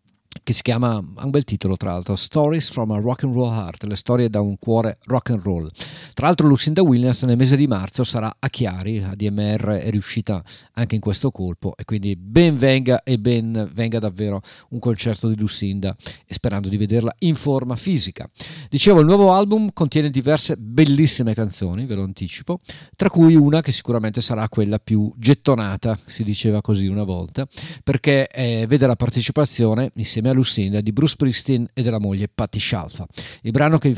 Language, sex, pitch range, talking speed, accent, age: Italian, male, 105-135 Hz, 185 wpm, native, 50-69